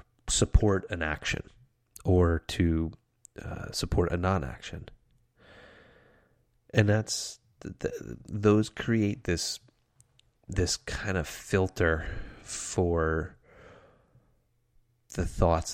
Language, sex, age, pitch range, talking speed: English, male, 30-49, 80-105 Hz, 80 wpm